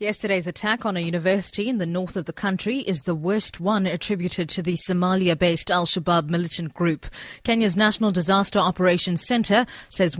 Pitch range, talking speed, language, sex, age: 170-215 Hz, 165 wpm, English, female, 30-49